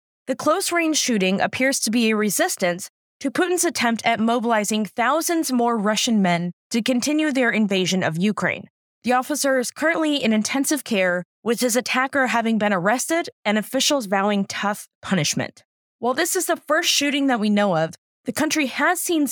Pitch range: 200-290 Hz